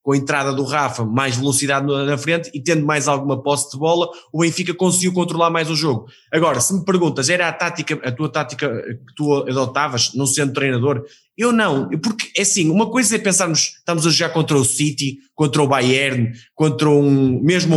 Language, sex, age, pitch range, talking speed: Portuguese, male, 20-39, 135-175 Hz, 205 wpm